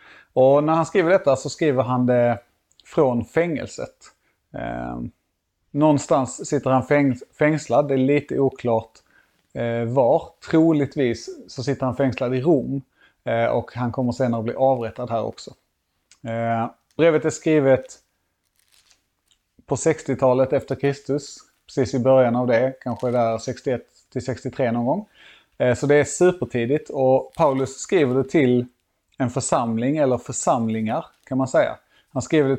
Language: Swedish